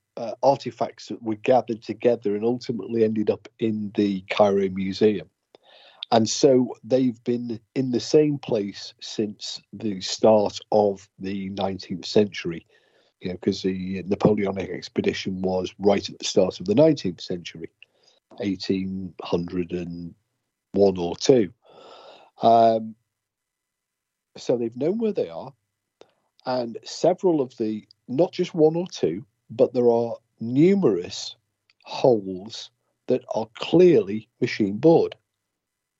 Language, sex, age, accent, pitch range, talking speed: English, male, 50-69, British, 100-135 Hz, 120 wpm